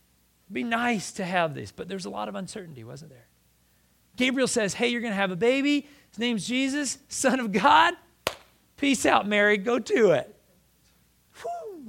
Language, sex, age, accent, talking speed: English, male, 40-59, American, 175 wpm